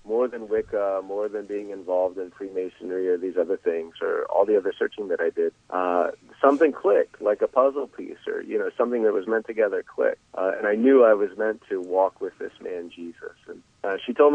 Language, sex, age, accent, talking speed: English, male, 30-49, American, 225 wpm